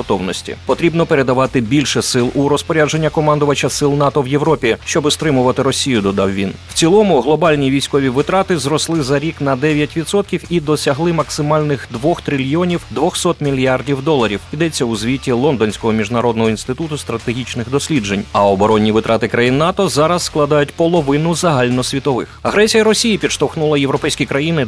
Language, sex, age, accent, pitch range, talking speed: Ukrainian, male, 30-49, native, 115-155 Hz, 140 wpm